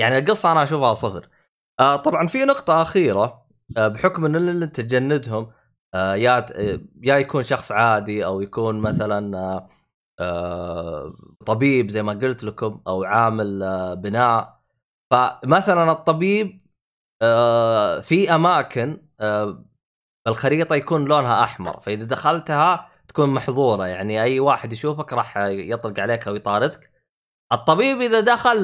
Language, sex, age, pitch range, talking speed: Arabic, male, 20-39, 105-155 Hz, 115 wpm